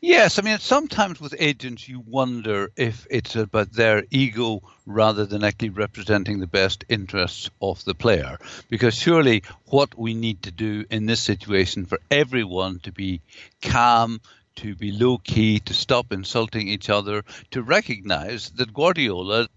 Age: 60-79